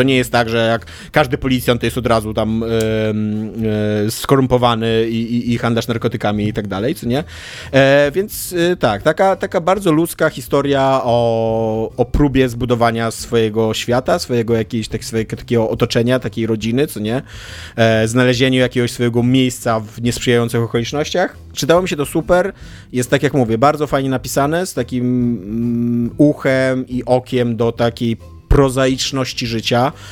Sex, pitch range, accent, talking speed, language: male, 115-135 Hz, native, 160 wpm, Polish